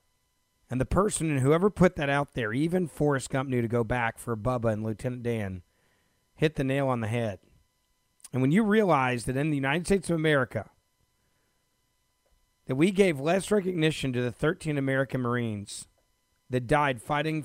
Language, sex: English, male